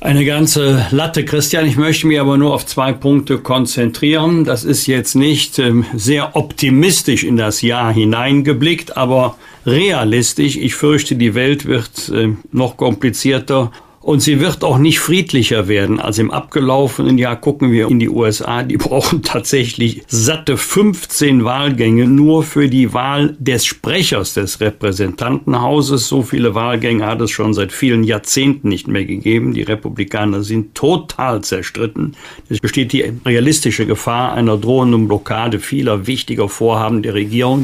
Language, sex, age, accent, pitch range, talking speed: German, male, 50-69, German, 110-140 Hz, 145 wpm